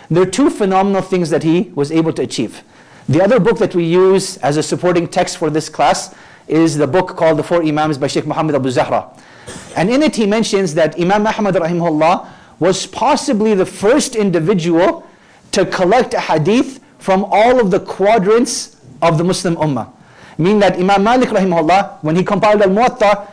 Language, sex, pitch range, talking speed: English, male, 170-220 Hz, 190 wpm